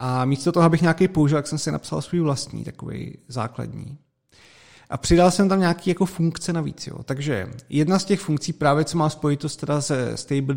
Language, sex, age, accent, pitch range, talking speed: Czech, male, 30-49, native, 125-155 Hz, 200 wpm